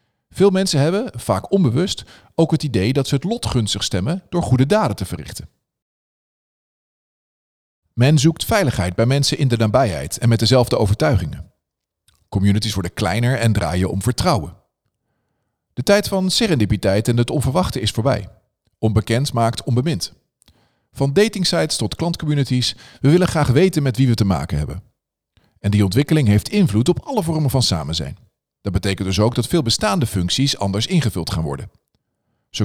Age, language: 40-59, Dutch